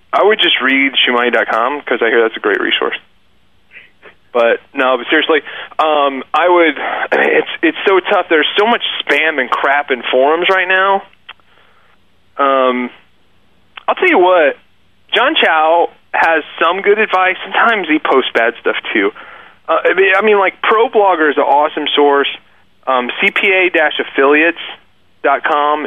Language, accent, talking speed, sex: English, American, 145 wpm, male